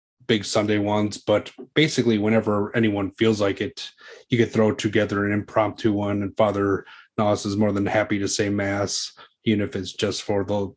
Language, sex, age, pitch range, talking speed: English, male, 30-49, 100-110 Hz, 185 wpm